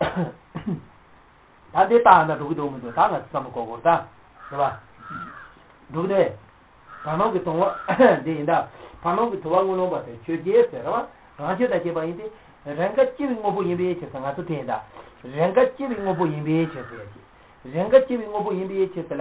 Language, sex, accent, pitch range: English, male, Indian, 145-210 Hz